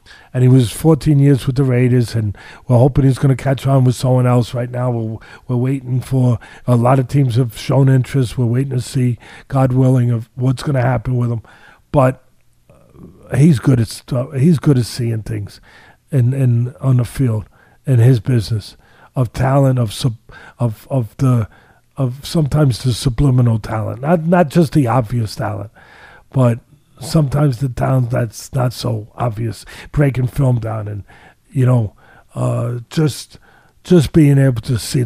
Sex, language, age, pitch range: male, English, 40-59, 120-140 Hz